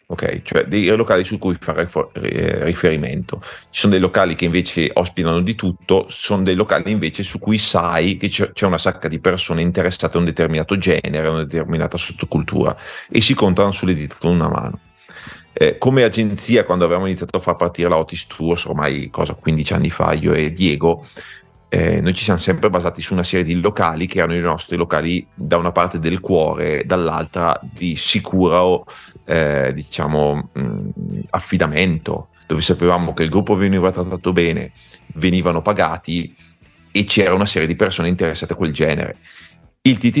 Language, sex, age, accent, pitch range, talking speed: Italian, male, 30-49, native, 85-95 Hz, 170 wpm